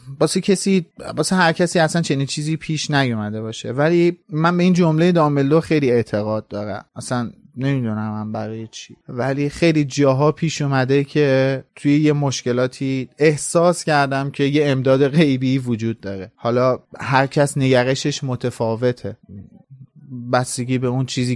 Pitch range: 120-155 Hz